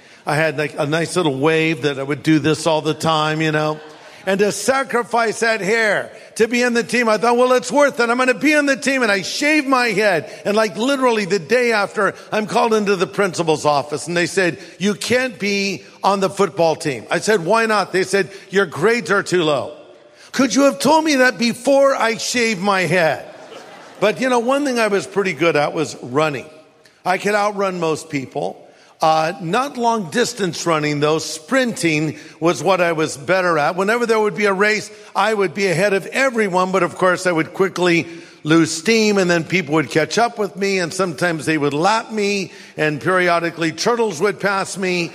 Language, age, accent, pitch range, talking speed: English, 50-69, American, 165-225 Hz, 210 wpm